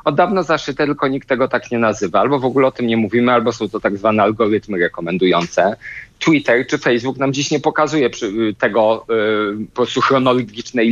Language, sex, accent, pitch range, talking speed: Polish, male, native, 115-150 Hz, 190 wpm